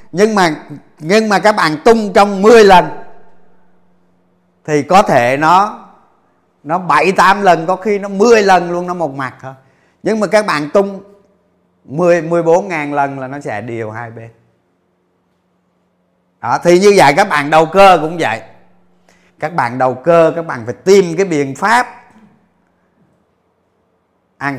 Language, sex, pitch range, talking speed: Vietnamese, male, 130-185 Hz, 155 wpm